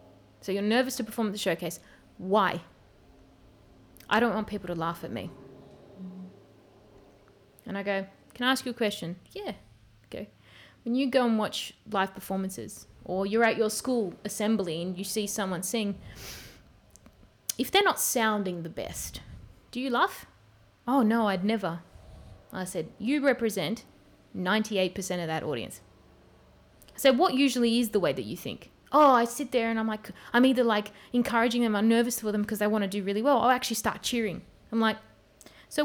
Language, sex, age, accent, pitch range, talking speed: English, female, 20-39, Australian, 185-245 Hz, 175 wpm